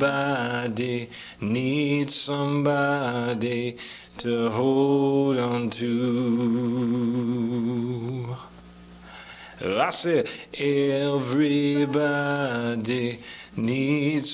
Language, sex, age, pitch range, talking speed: English, male, 40-59, 120-140 Hz, 40 wpm